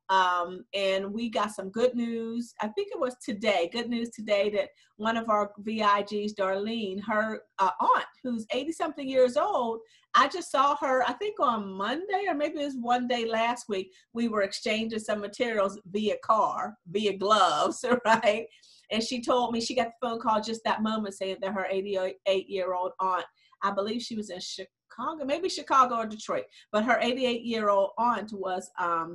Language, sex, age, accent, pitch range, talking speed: English, female, 50-69, American, 195-250 Hz, 180 wpm